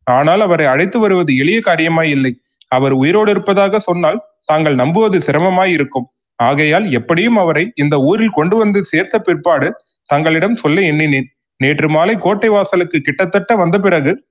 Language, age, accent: Tamil, 30-49, native